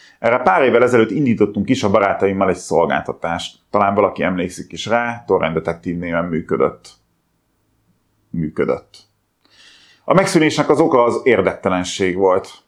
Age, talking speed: 30-49, 130 wpm